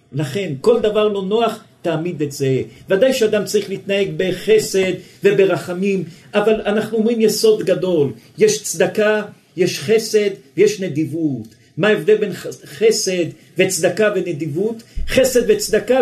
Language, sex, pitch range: Hebrew, male, 175-230 Hz